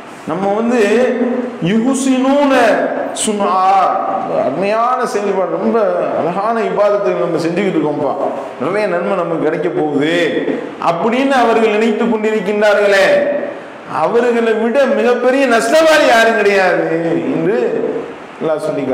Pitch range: 190-240 Hz